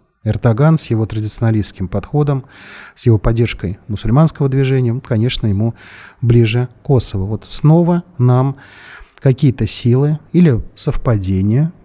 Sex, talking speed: male, 110 wpm